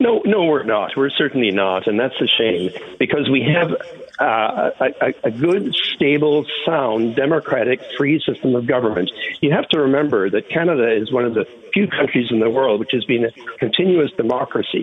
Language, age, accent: English, 60-79, American